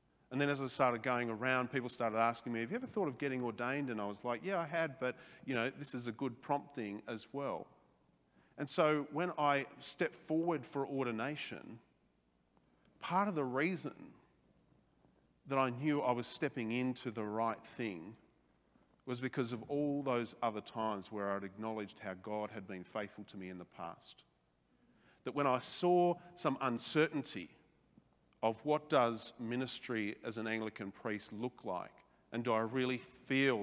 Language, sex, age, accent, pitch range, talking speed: English, male, 40-59, Australian, 110-135 Hz, 175 wpm